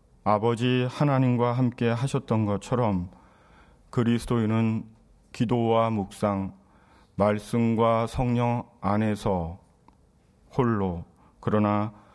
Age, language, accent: 40-59, Korean, native